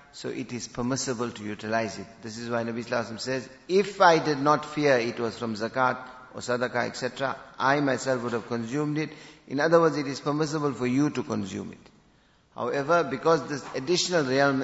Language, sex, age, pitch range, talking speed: English, male, 50-69, 120-145 Hz, 195 wpm